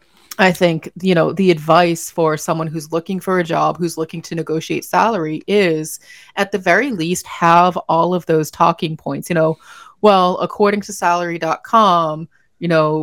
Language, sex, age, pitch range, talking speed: English, female, 30-49, 160-185 Hz, 170 wpm